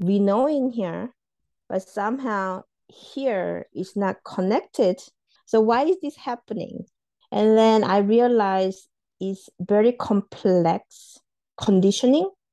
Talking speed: 110 wpm